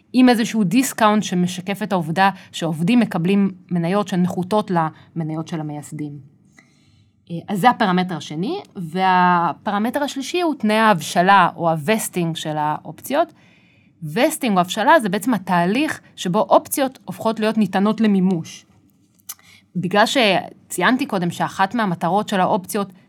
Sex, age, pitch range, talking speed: female, 30-49, 170-225 Hz, 115 wpm